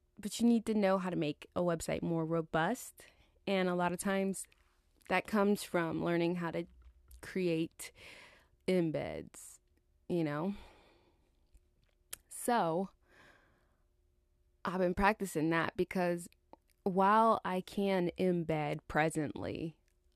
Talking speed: 115 wpm